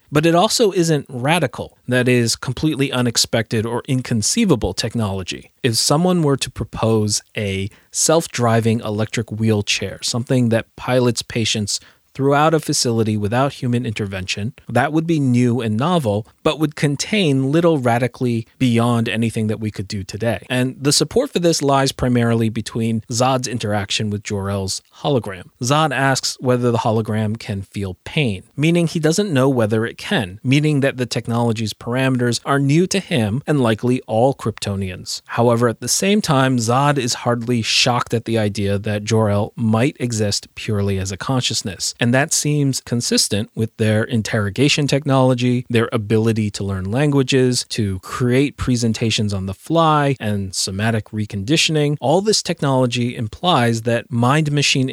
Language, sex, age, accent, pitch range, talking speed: English, male, 30-49, American, 110-135 Hz, 150 wpm